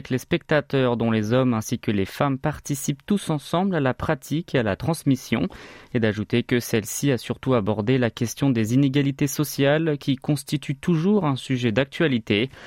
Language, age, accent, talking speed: French, 20-39, French, 180 wpm